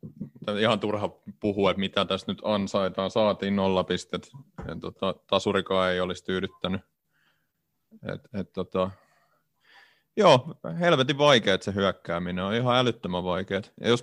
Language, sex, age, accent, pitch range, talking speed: Finnish, male, 30-49, native, 95-105 Hz, 120 wpm